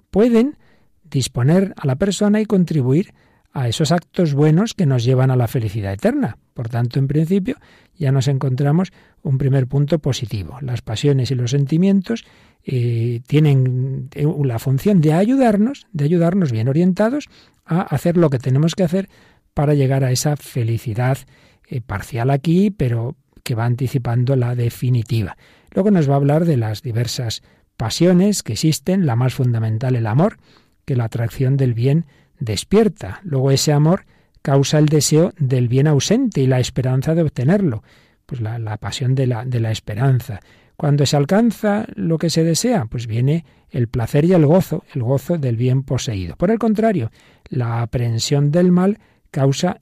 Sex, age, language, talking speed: male, 40-59, Spanish, 165 wpm